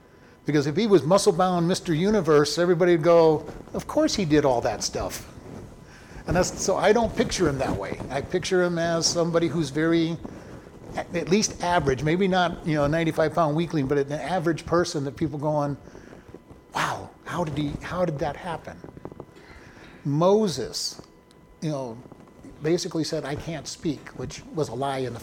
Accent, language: American, English